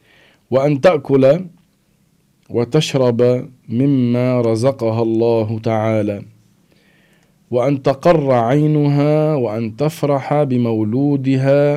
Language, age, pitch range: Arabic, 50-69, 115-145 Hz